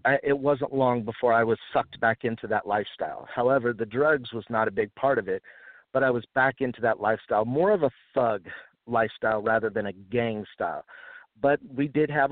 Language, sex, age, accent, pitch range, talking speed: English, male, 50-69, American, 110-130 Hz, 210 wpm